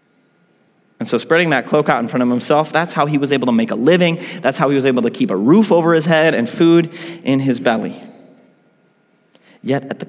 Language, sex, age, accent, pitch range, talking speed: English, male, 30-49, American, 130-175 Hz, 230 wpm